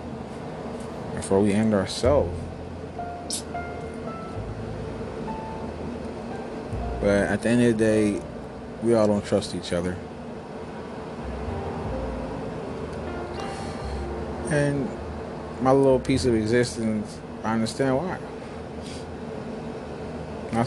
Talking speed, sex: 80 wpm, male